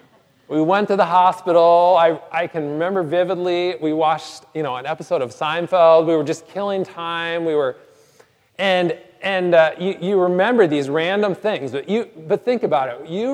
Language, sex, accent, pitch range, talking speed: English, male, American, 155-205 Hz, 185 wpm